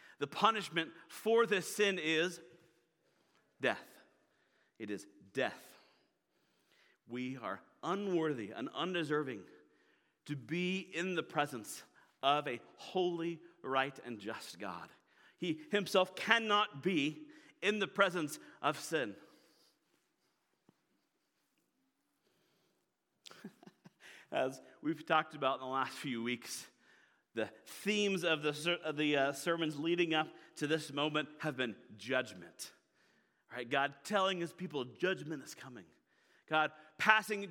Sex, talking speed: male, 115 wpm